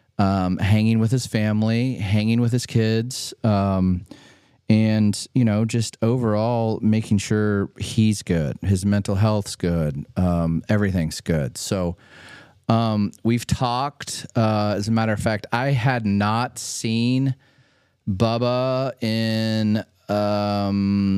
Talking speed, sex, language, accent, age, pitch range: 120 wpm, male, English, American, 30-49, 100-120 Hz